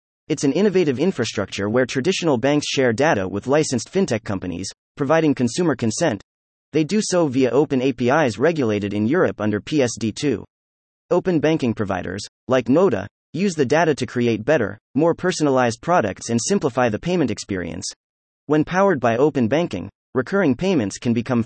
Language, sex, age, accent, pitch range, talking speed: English, male, 30-49, American, 110-160 Hz, 155 wpm